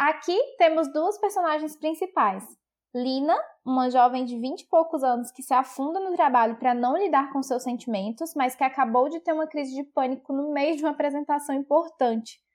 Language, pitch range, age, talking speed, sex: Portuguese, 240-310 Hz, 10-29, 185 wpm, female